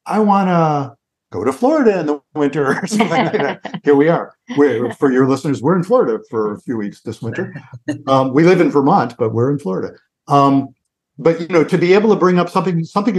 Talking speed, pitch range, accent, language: 230 wpm, 125-165 Hz, American, English